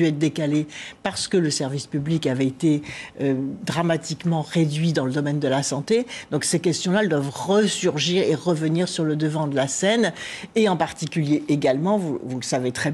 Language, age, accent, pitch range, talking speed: French, 60-79, French, 155-190 Hz, 190 wpm